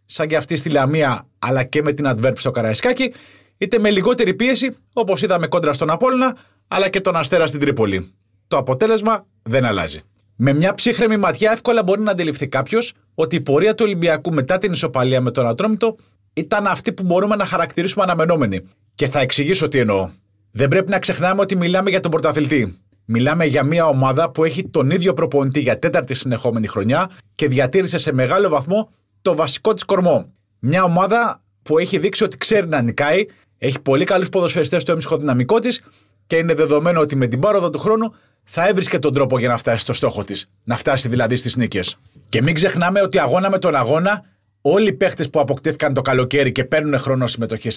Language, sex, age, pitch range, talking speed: Greek, male, 30-49, 130-195 Hz, 195 wpm